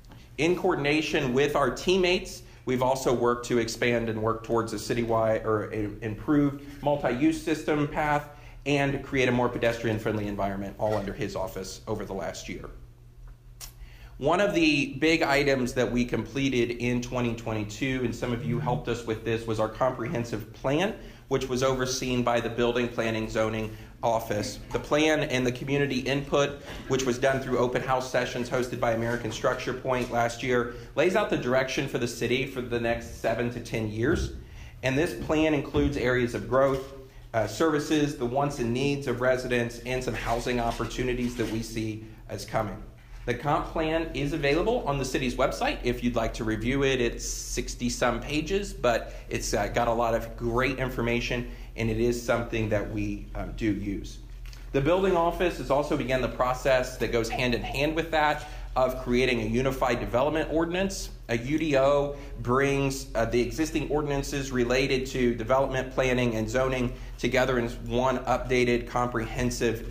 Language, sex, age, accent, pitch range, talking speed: English, male, 40-59, American, 115-135 Hz, 170 wpm